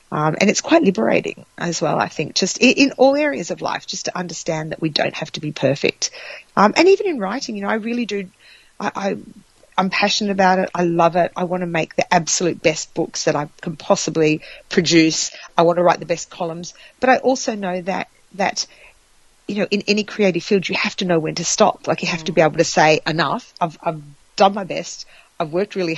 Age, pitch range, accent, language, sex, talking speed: 40-59, 155-190 Hz, Australian, English, female, 235 wpm